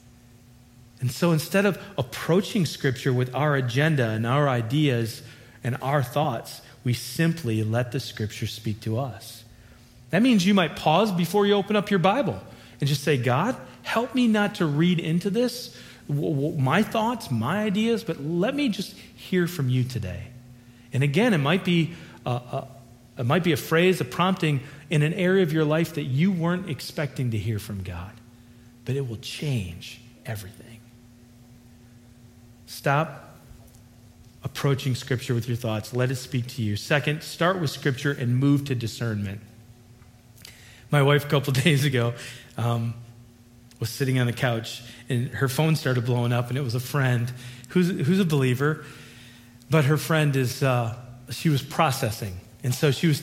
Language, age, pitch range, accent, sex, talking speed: English, 40-59, 120-155 Hz, American, male, 160 wpm